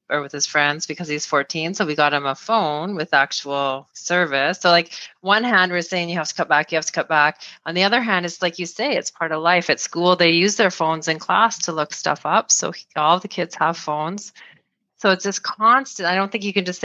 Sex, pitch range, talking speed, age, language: female, 155-180 Hz, 255 wpm, 30-49, English